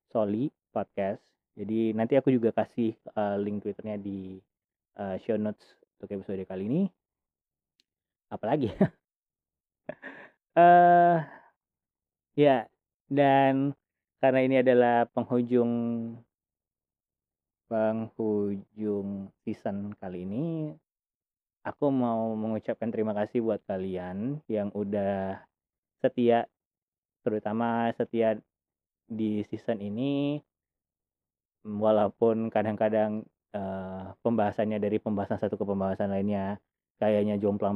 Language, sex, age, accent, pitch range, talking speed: Indonesian, male, 20-39, native, 100-125 Hz, 90 wpm